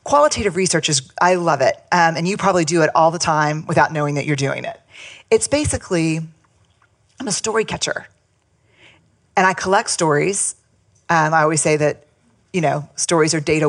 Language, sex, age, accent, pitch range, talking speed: English, female, 40-59, American, 145-180 Hz, 180 wpm